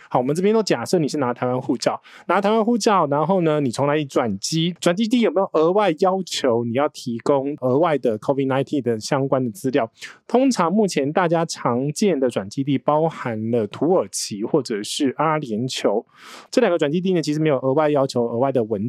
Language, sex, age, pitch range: Chinese, male, 20-39, 130-185 Hz